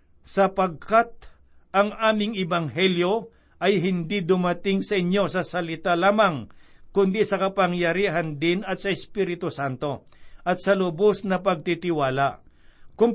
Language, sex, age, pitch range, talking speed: Filipino, male, 60-79, 175-210 Hz, 120 wpm